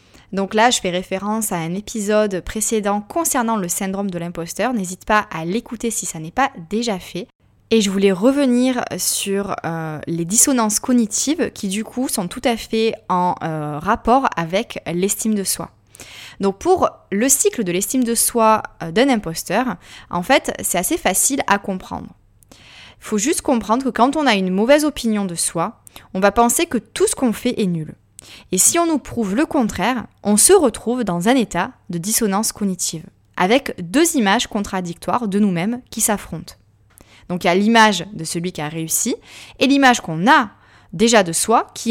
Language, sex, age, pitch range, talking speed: French, female, 20-39, 175-245 Hz, 185 wpm